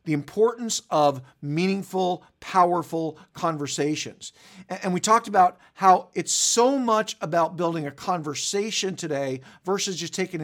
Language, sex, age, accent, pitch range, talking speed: English, male, 50-69, American, 145-200 Hz, 125 wpm